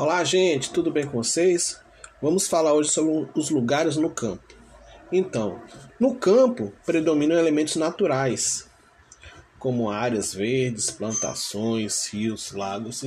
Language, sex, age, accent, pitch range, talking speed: Portuguese, male, 20-39, Brazilian, 115-165 Hz, 120 wpm